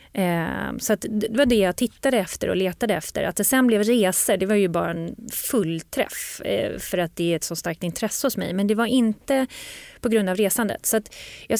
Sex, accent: female, native